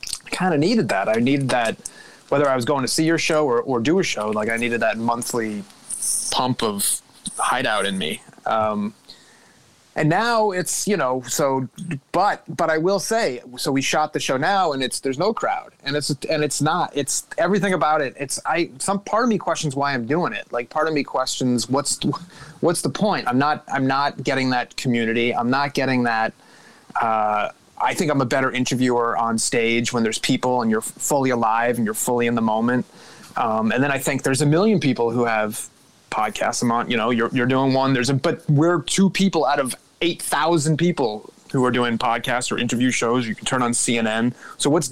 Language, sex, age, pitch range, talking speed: English, male, 30-49, 120-155 Hz, 210 wpm